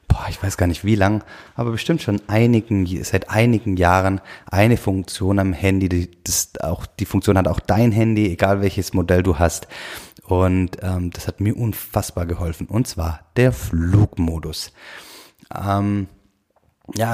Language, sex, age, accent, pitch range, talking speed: German, male, 30-49, German, 90-105 Hz, 155 wpm